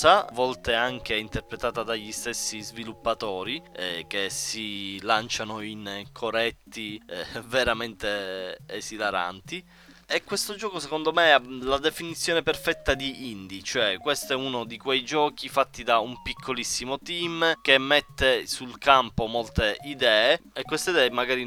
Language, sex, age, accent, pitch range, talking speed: Italian, male, 20-39, native, 110-130 Hz, 135 wpm